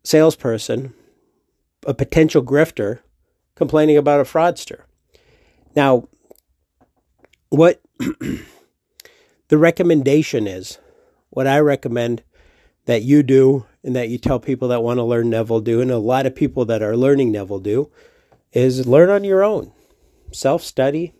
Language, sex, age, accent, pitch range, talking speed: English, male, 50-69, American, 115-145 Hz, 130 wpm